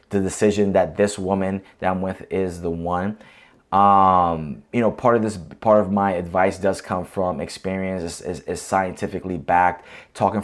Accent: American